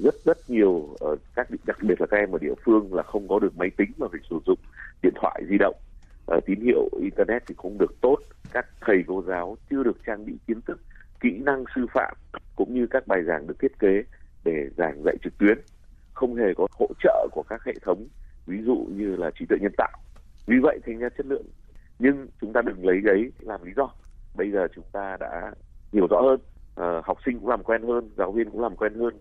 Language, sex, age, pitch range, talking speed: Vietnamese, male, 30-49, 95-135 Hz, 230 wpm